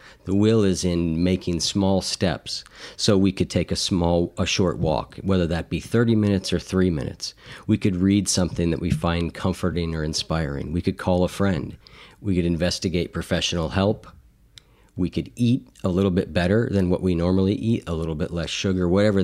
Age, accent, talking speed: 50-69, American, 195 wpm